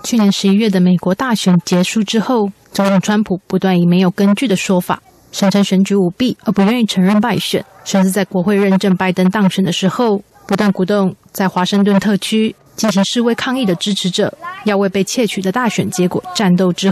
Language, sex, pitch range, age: Chinese, female, 185-210 Hz, 20-39